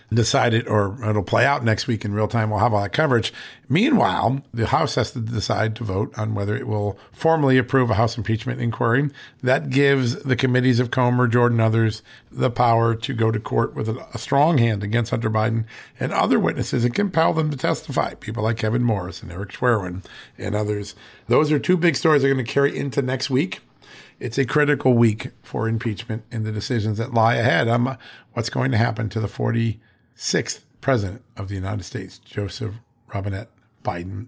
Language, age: English, 50-69